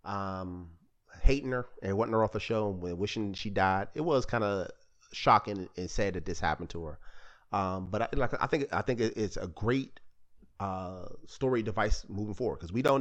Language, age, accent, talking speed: English, 30-49, American, 210 wpm